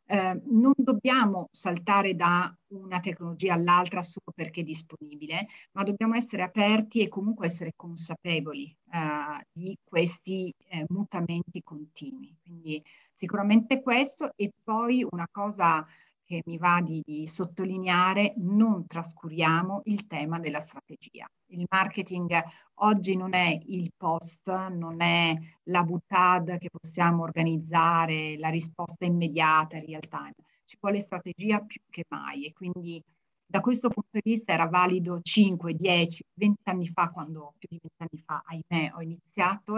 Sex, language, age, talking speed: female, Italian, 40-59, 140 wpm